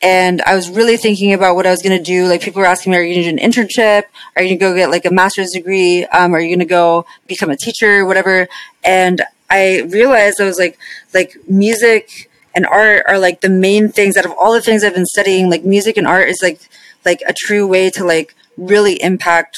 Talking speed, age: 250 wpm, 20-39